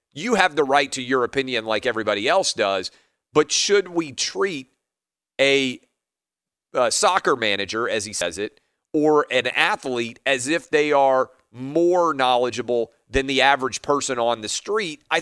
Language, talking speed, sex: English, 160 wpm, male